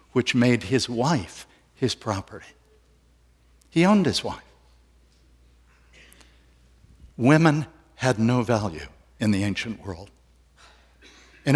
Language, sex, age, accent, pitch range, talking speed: English, male, 60-79, American, 85-130 Hz, 100 wpm